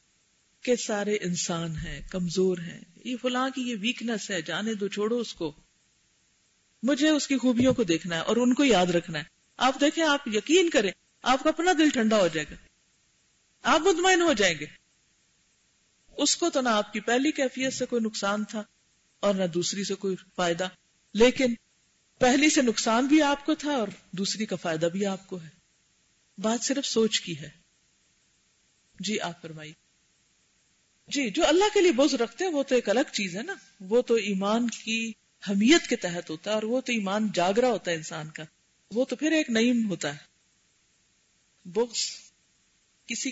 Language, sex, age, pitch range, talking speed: Urdu, female, 50-69, 180-250 Hz, 180 wpm